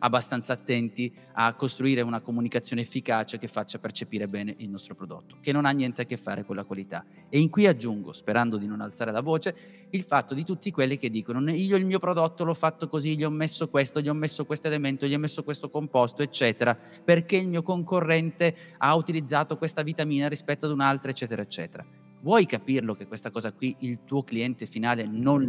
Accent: native